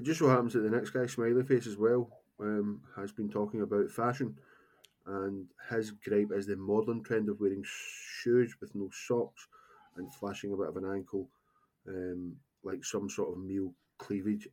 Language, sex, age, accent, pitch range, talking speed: English, male, 20-39, British, 100-125 Hz, 185 wpm